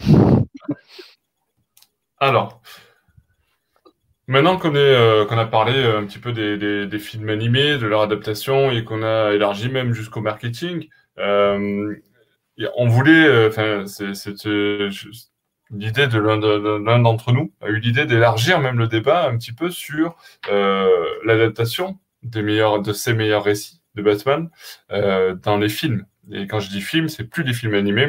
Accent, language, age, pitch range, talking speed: French, French, 20-39, 100-125 Hz, 160 wpm